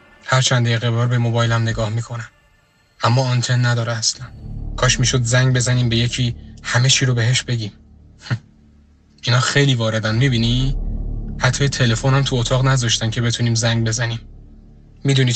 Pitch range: 115-135 Hz